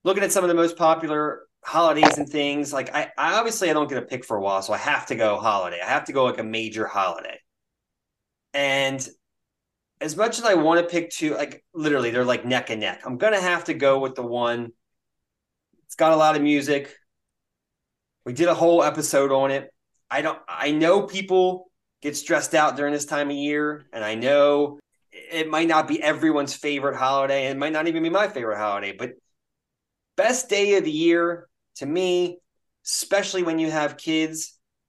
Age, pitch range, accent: 30-49, 130-160 Hz, American